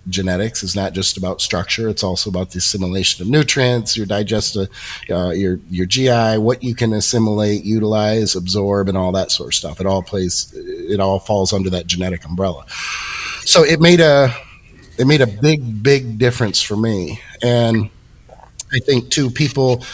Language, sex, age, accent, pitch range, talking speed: English, male, 30-49, American, 105-130 Hz, 175 wpm